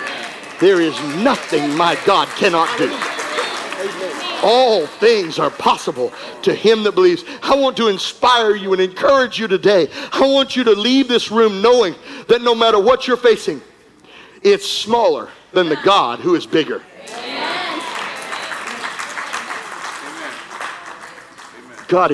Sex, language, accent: male, English, American